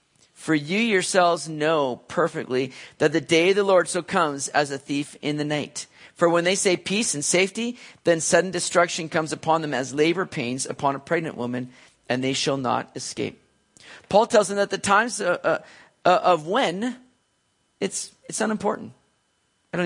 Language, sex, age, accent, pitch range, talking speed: English, male, 40-59, American, 145-185 Hz, 170 wpm